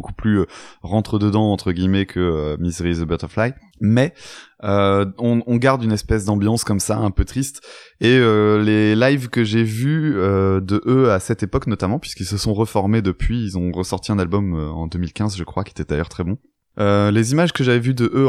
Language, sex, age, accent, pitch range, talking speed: French, male, 20-39, French, 95-120 Hz, 215 wpm